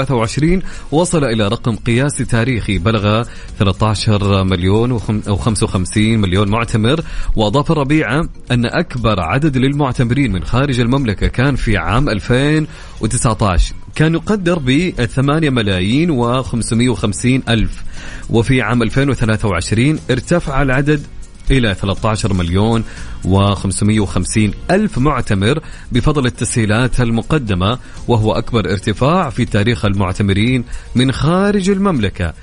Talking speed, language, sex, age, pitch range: 105 wpm, English, male, 30-49, 105-145 Hz